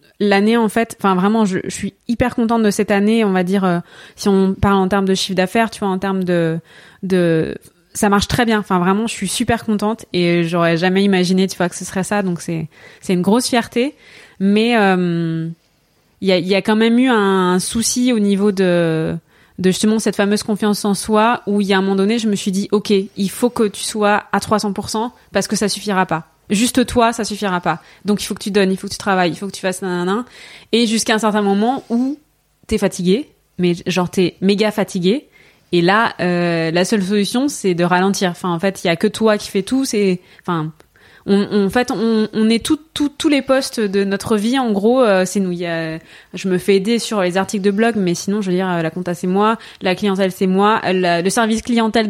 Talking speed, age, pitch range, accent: 240 wpm, 20-39, 185-220 Hz, French